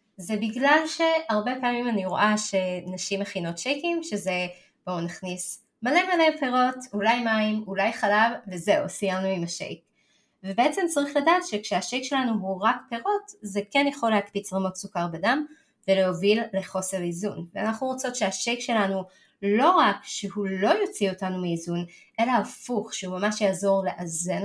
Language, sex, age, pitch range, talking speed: Hebrew, female, 20-39, 190-255 Hz, 140 wpm